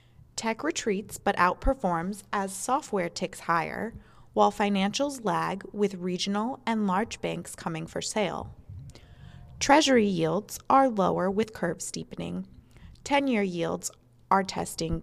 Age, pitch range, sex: 20-39, 180-225 Hz, female